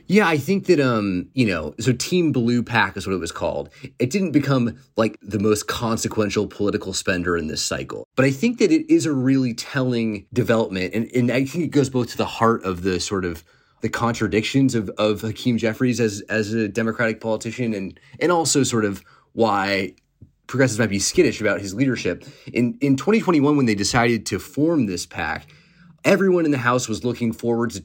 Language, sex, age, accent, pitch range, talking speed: English, male, 30-49, American, 105-130 Hz, 200 wpm